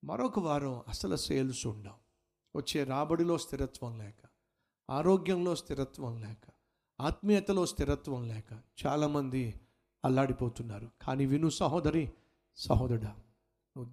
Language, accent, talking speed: Telugu, native, 95 wpm